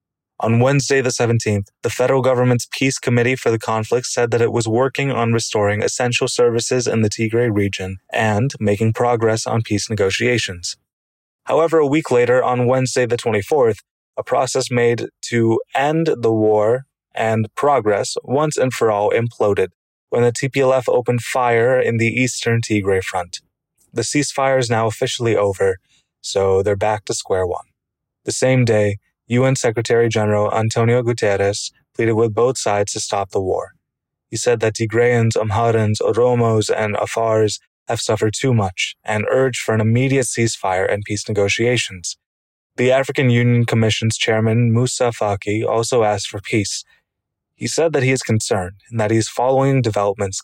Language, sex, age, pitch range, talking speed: English, male, 20-39, 110-125 Hz, 160 wpm